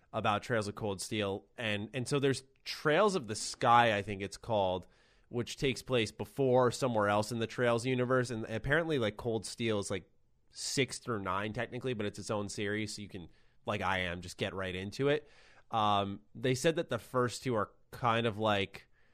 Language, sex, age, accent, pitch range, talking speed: English, male, 20-39, American, 100-125 Hz, 205 wpm